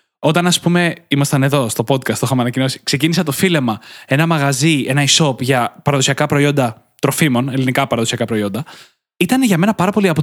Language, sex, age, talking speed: Greek, male, 20-39, 180 wpm